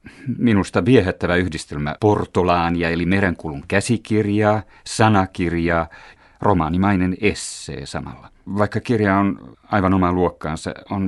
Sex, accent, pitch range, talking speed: male, native, 85-100 Hz, 95 wpm